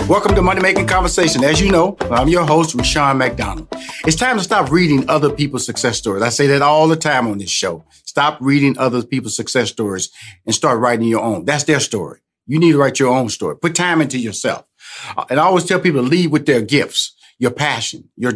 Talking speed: 225 wpm